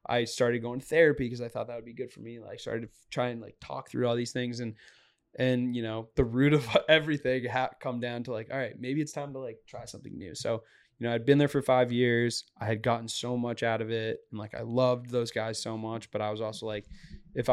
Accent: American